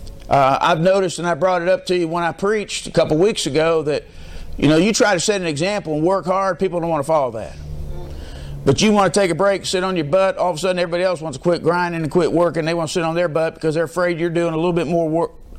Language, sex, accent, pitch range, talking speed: English, male, American, 150-175 Hz, 295 wpm